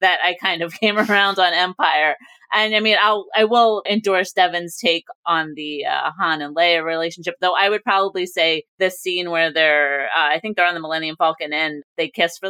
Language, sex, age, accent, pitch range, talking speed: English, female, 30-49, American, 160-210 Hz, 220 wpm